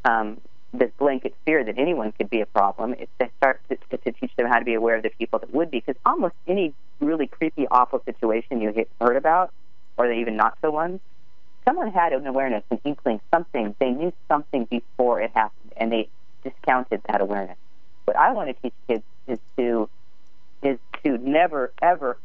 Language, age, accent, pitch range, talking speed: English, 40-59, American, 115-145 Hz, 200 wpm